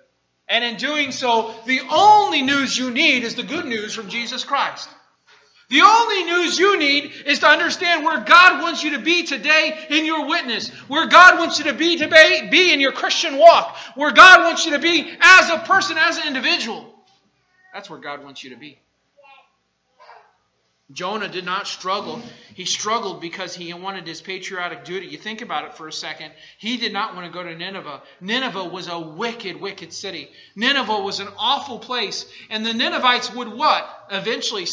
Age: 40-59